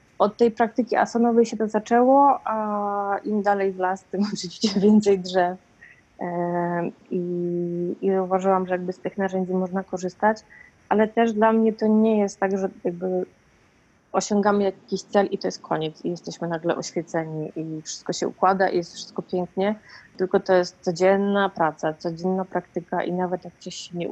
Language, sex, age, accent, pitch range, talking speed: Polish, female, 30-49, native, 170-200 Hz, 170 wpm